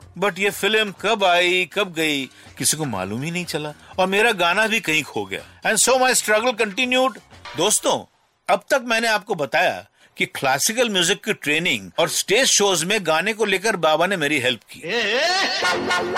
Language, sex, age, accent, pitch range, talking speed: Hindi, male, 50-69, native, 140-200 Hz, 180 wpm